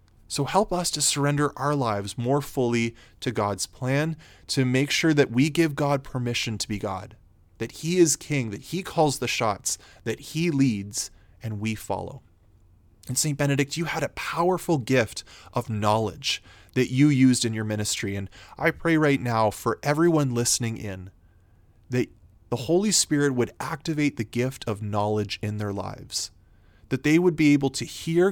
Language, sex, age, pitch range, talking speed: English, male, 20-39, 105-145 Hz, 175 wpm